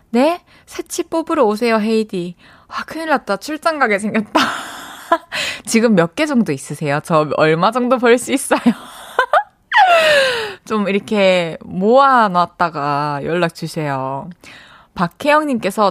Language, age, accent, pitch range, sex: Korean, 20-39, native, 180-275 Hz, female